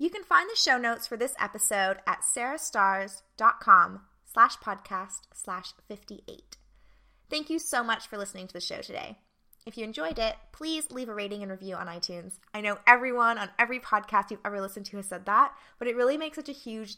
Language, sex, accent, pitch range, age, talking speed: English, female, American, 200-260 Hz, 20-39, 200 wpm